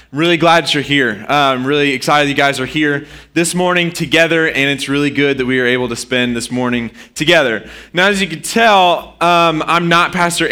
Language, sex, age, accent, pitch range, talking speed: English, male, 20-39, American, 140-175 Hz, 210 wpm